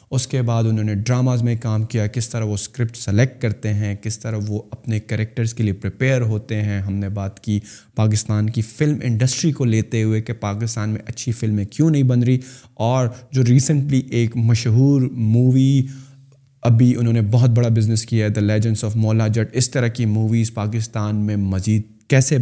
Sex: male